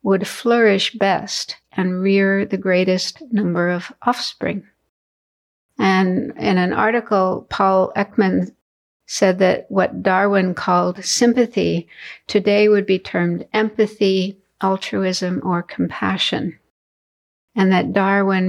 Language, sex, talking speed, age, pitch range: English, female, 105 wpm, 60-79, 180-215 Hz